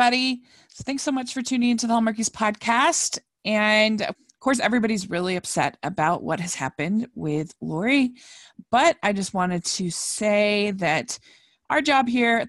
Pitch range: 175-240 Hz